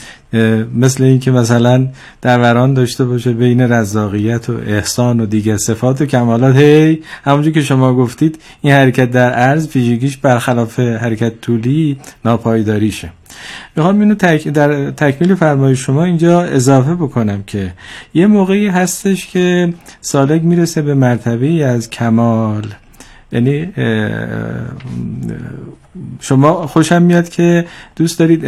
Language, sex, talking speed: Persian, male, 125 wpm